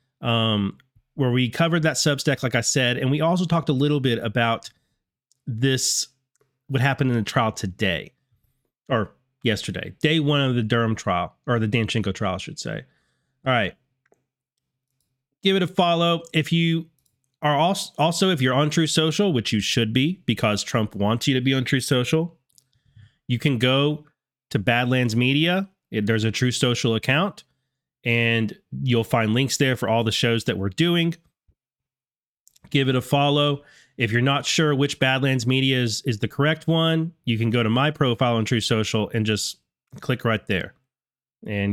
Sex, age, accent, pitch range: male, 30-49, American, 115-145 Hz